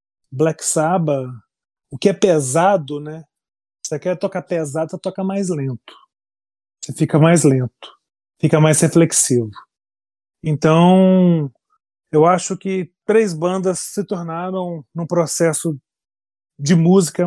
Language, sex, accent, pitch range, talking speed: Portuguese, male, Brazilian, 145-190 Hz, 120 wpm